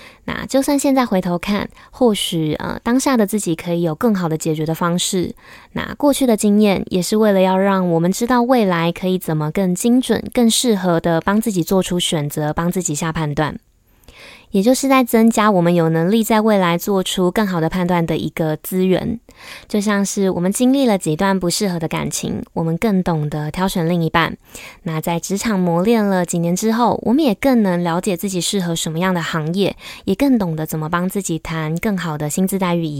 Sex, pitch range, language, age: female, 165-215 Hz, Chinese, 20-39